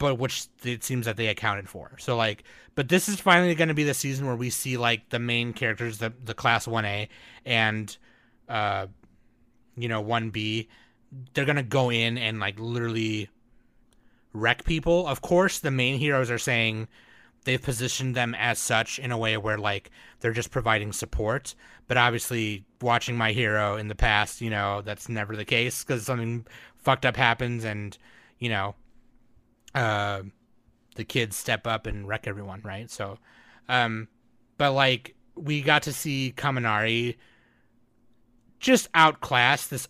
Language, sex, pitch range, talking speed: English, male, 115-130 Hz, 170 wpm